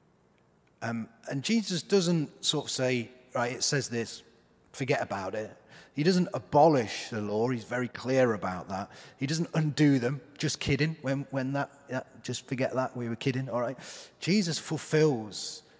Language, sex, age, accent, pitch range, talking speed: English, male, 30-49, British, 120-155 Hz, 165 wpm